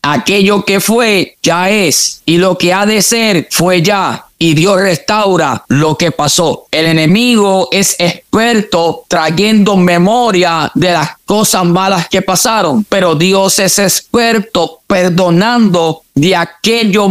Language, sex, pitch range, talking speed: English, male, 175-200 Hz, 135 wpm